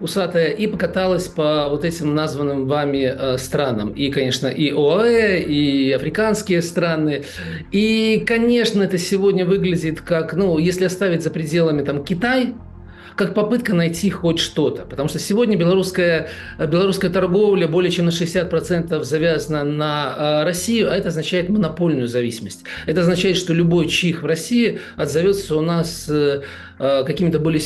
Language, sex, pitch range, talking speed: Russian, male, 155-200 Hz, 135 wpm